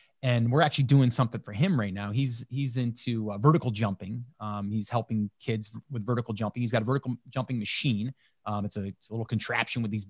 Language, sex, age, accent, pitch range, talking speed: English, male, 30-49, American, 115-160 Hz, 220 wpm